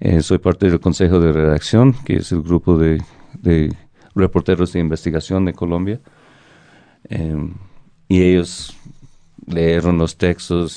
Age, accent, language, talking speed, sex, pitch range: 40-59, Mexican, Spanish, 135 wpm, male, 85-95 Hz